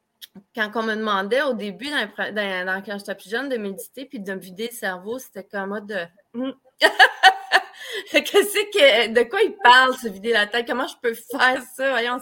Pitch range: 195-260 Hz